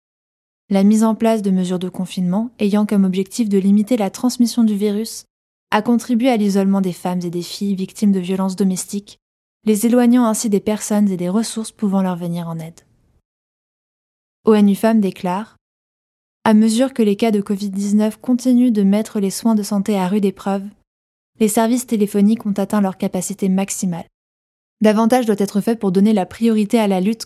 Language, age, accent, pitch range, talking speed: French, 20-39, French, 190-220 Hz, 180 wpm